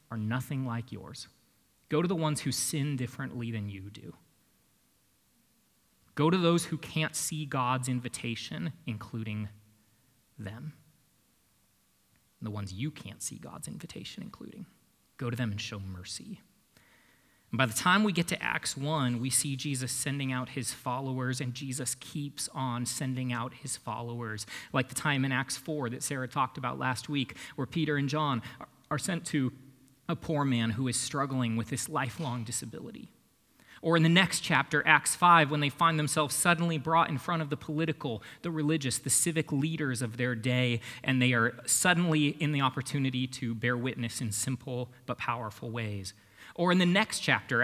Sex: male